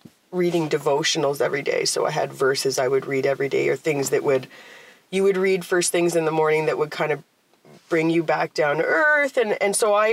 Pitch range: 150-200 Hz